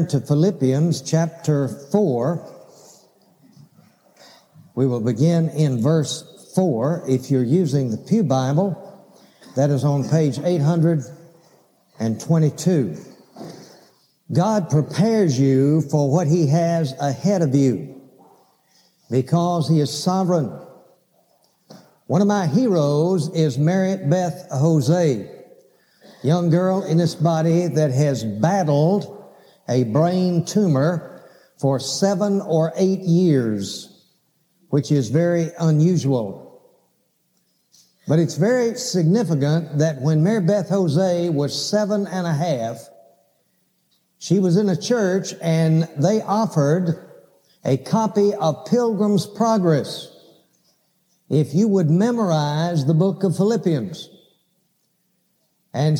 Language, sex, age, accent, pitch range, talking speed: English, male, 60-79, American, 150-190 Hz, 105 wpm